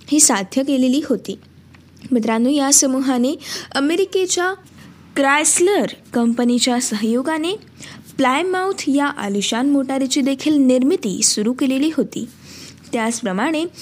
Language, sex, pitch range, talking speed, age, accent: Marathi, female, 225-300 Hz, 90 wpm, 20-39, native